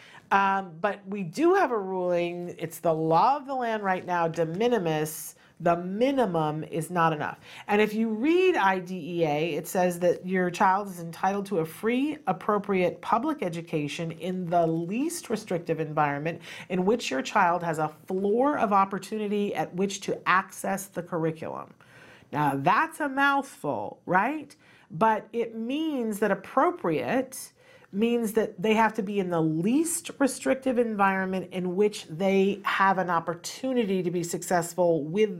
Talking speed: 155 wpm